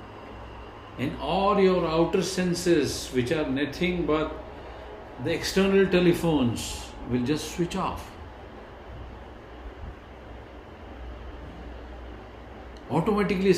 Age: 50-69